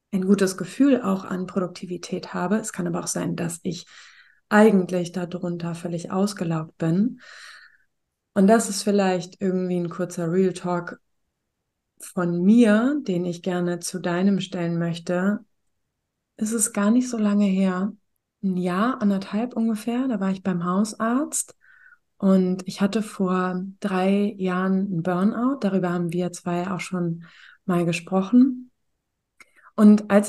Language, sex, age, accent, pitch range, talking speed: German, female, 20-39, German, 175-210 Hz, 140 wpm